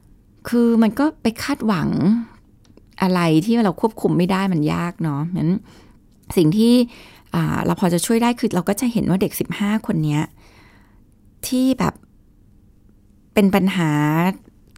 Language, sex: Thai, female